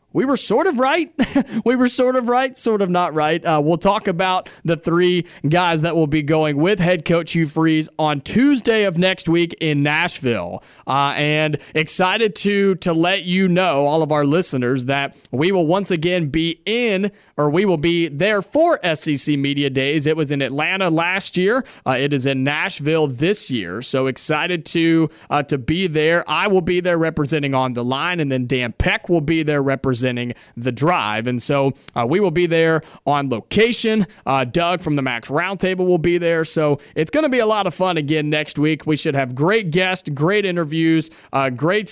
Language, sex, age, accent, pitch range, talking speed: English, male, 30-49, American, 140-180 Hz, 205 wpm